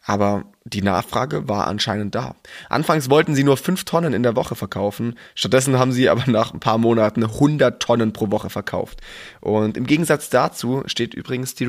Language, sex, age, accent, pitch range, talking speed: German, male, 20-39, German, 105-135 Hz, 185 wpm